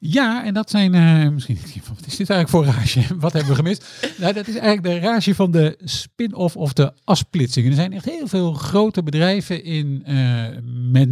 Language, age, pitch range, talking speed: Dutch, 50-69, 130-180 Hz, 205 wpm